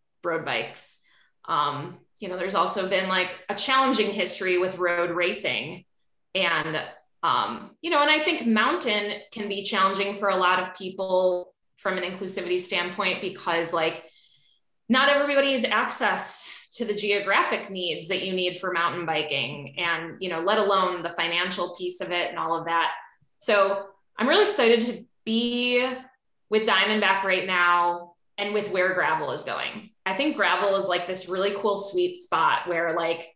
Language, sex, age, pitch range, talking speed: English, female, 20-39, 180-225 Hz, 165 wpm